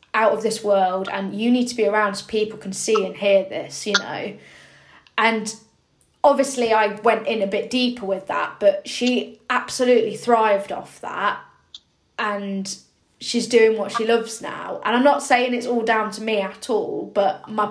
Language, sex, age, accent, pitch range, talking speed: English, female, 20-39, British, 200-235 Hz, 185 wpm